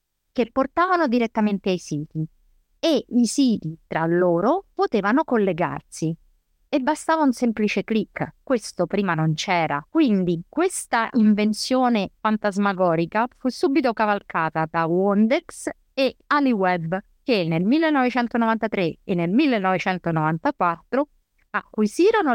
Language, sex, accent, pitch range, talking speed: Italian, female, native, 180-255 Hz, 105 wpm